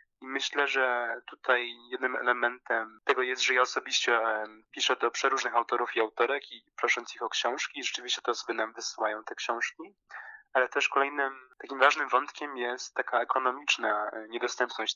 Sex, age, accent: male, 20-39, native